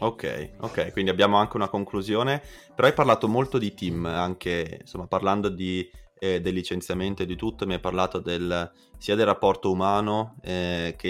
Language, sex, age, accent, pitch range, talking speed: Italian, male, 20-39, native, 90-110 Hz, 180 wpm